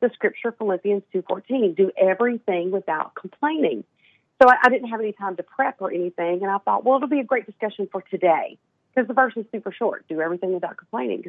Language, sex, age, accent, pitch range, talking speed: English, female, 40-59, American, 185-225 Hz, 215 wpm